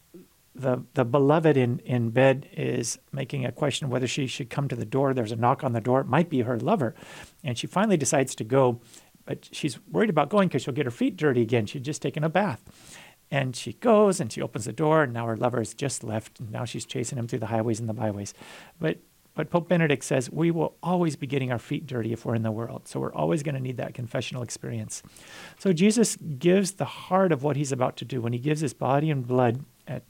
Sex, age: male, 40-59